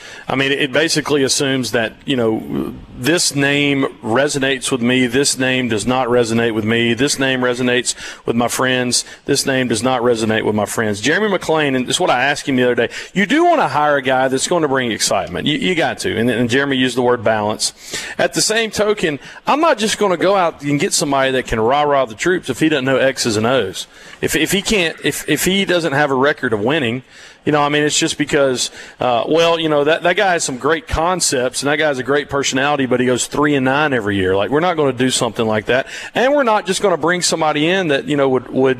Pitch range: 130-165 Hz